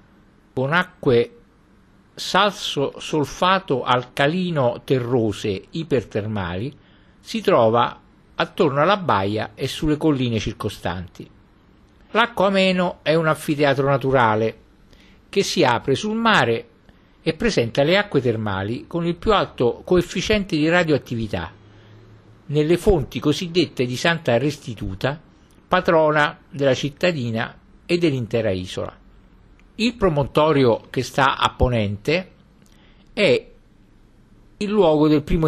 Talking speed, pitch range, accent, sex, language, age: 100 wpm, 110-175 Hz, native, male, Italian, 50-69